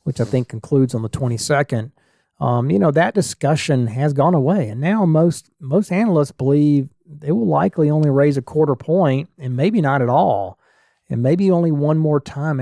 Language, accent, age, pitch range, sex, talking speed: English, American, 40-59, 125-155 Hz, male, 190 wpm